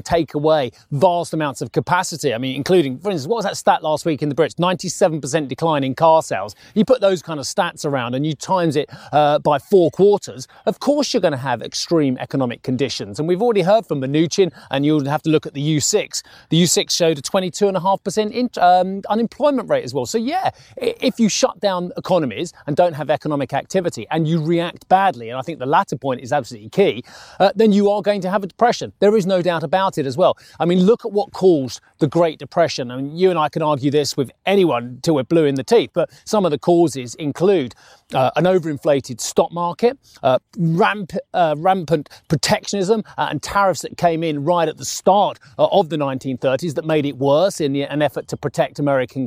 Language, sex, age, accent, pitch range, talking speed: English, male, 30-49, British, 145-190 Hz, 220 wpm